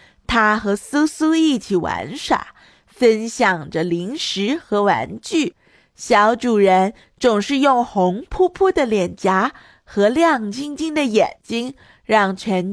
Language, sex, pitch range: Chinese, female, 200-290 Hz